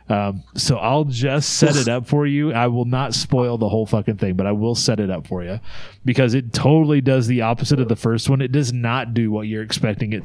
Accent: American